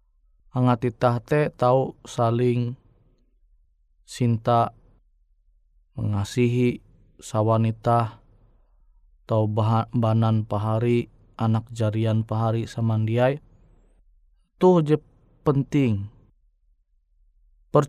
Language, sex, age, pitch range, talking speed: Indonesian, male, 20-39, 110-140 Hz, 65 wpm